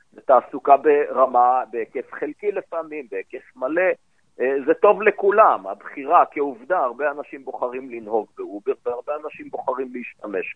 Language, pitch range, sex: Hebrew, 115-185 Hz, male